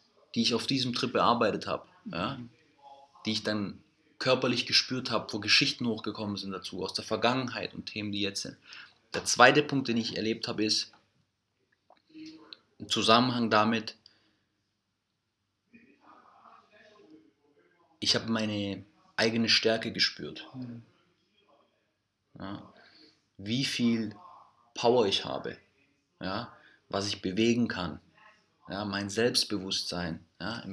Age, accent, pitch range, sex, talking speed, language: 30-49, German, 105-125 Hz, male, 105 wpm, German